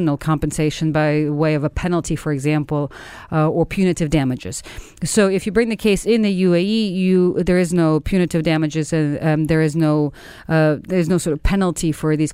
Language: English